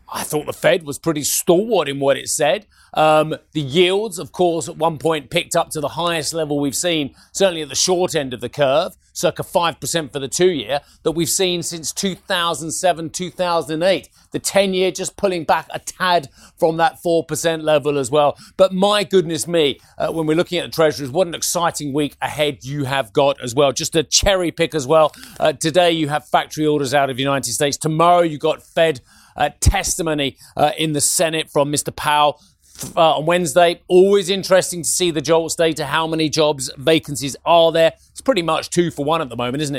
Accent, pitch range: British, 145-170 Hz